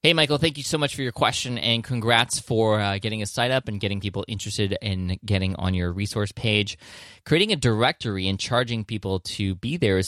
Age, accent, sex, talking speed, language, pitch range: 20-39, American, male, 220 wpm, English, 90-110 Hz